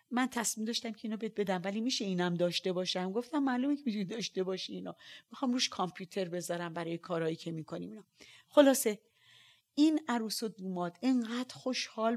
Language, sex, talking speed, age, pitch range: Persian, female, 175 wpm, 40-59, 185-240 Hz